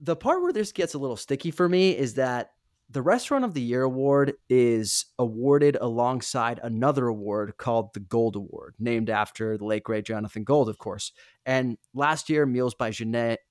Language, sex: English, male